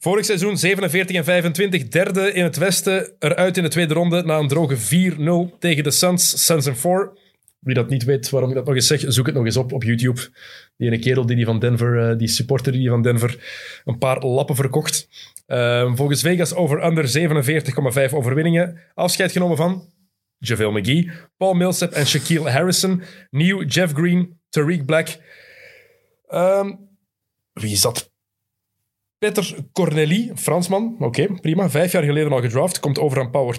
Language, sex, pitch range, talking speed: Dutch, male, 125-175 Hz, 175 wpm